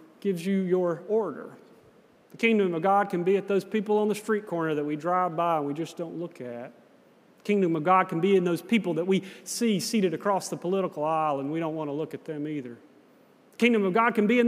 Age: 40-59